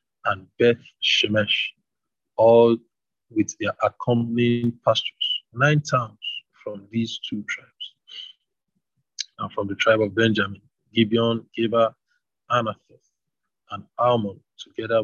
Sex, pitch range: male, 110-130 Hz